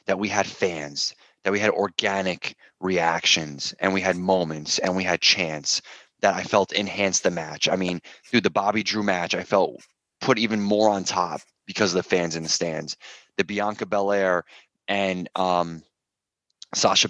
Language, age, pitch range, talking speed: English, 20-39, 85-105 Hz, 175 wpm